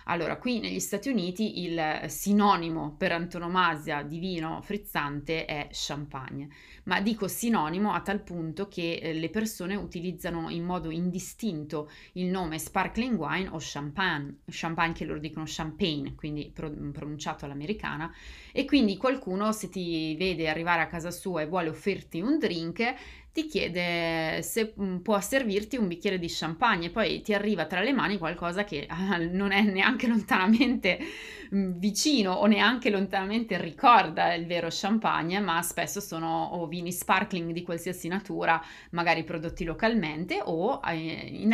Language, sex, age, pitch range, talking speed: Italian, female, 20-39, 165-205 Hz, 145 wpm